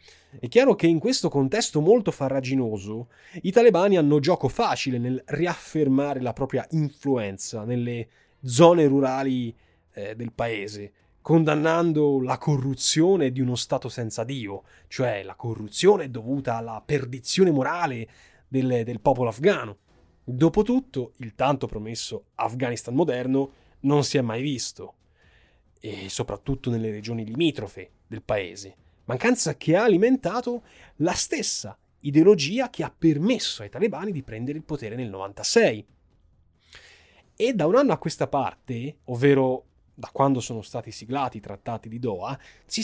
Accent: native